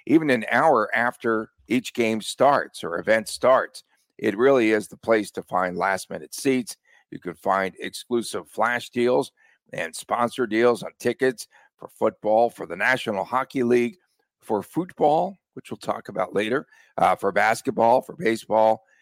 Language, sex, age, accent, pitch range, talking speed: English, male, 50-69, American, 110-140 Hz, 155 wpm